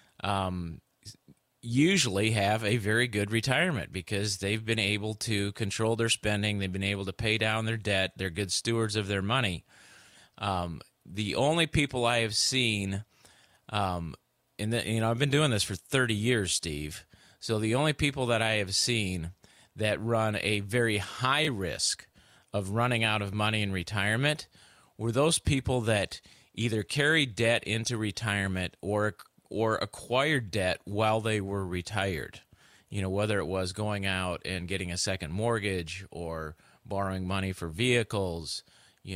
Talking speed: 160 wpm